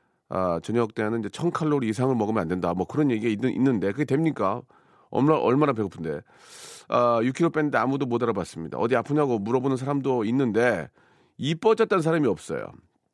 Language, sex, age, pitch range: Korean, male, 40-59, 105-145 Hz